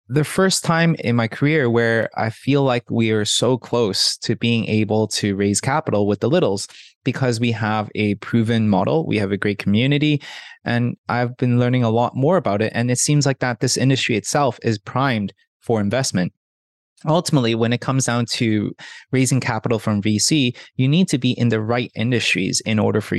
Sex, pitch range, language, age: male, 105-130 Hz, English, 20-39